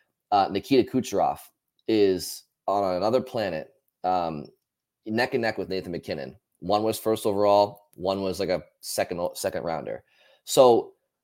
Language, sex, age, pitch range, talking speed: English, male, 20-39, 90-120 Hz, 140 wpm